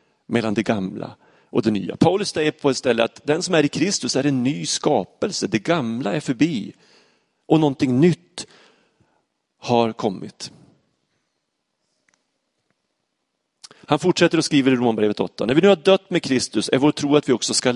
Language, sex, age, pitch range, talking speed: Swedish, male, 30-49, 110-150 Hz, 175 wpm